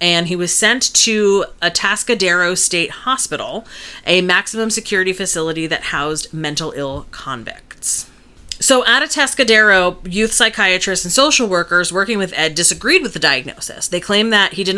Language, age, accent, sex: English, 30-49, American, female